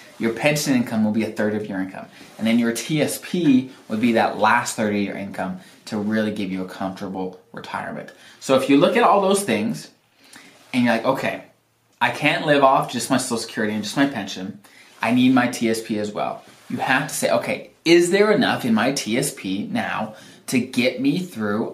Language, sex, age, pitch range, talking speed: English, male, 20-39, 110-155 Hz, 205 wpm